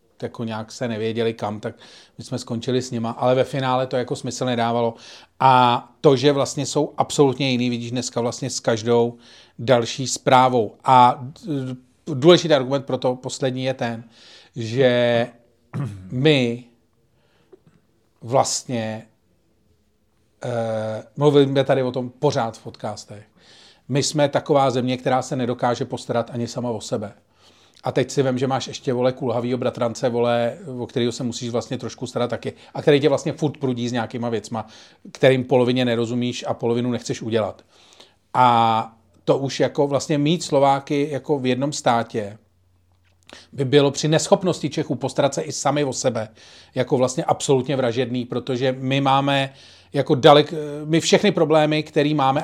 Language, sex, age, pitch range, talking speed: Czech, male, 40-59, 120-140 Hz, 150 wpm